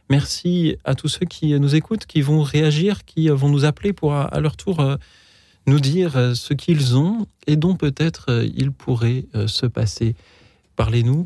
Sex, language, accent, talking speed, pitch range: male, French, French, 165 wpm, 110-135 Hz